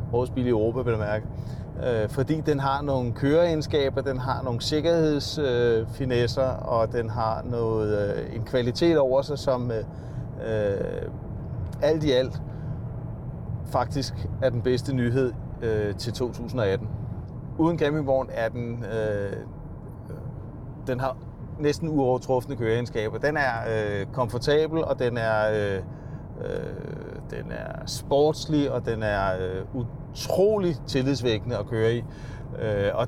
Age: 30-49